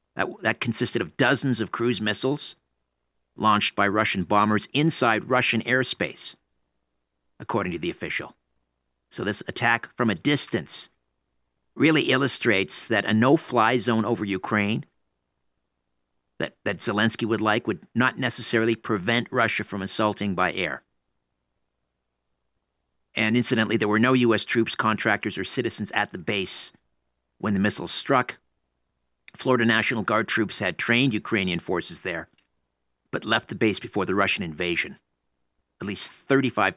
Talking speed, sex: 135 wpm, male